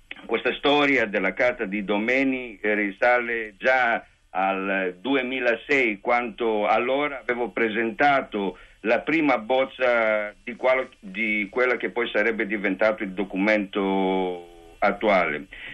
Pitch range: 105-135 Hz